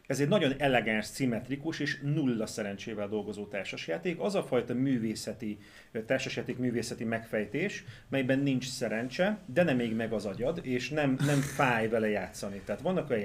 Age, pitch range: 30-49, 115-145 Hz